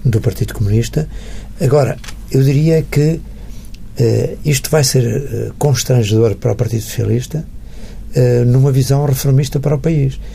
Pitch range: 110-135 Hz